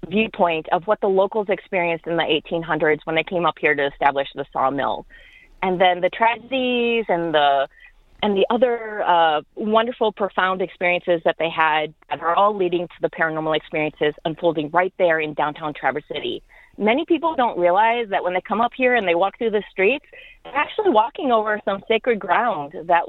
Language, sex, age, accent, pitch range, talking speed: English, female, 30-49, American, 160-205 Hz, 190 wpm